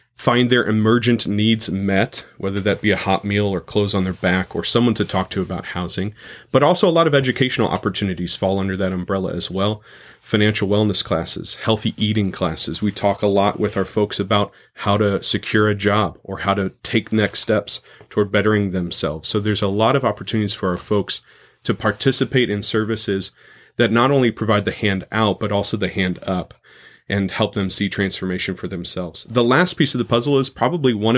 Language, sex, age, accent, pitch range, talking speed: English, male, 30-49, American, 100-115 Hz, 200 wpm